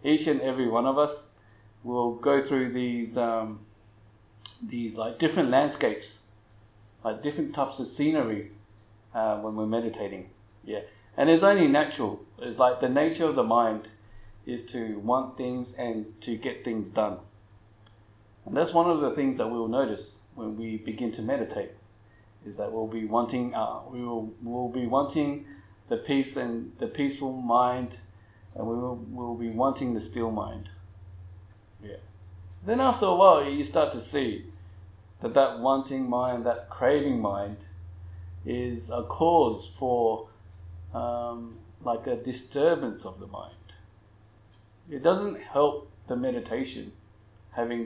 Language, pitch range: English, 105-125 Hz